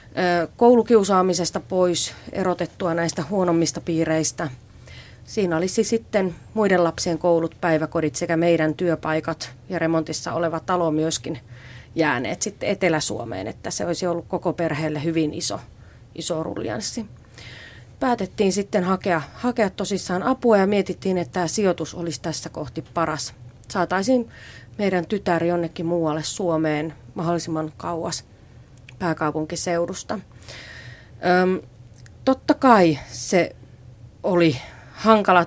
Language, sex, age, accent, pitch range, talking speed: Finnish, female, 30-49, native, 150-185 Hz, 105 wpm